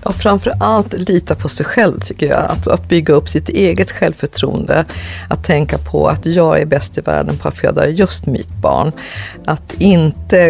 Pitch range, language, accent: 140-180 Hz, Swedish, native